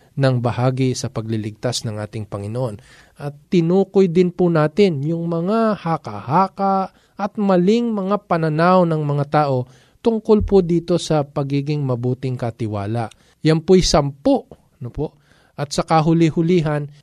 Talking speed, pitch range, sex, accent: 125 wpm, 140-180 Hz, male, native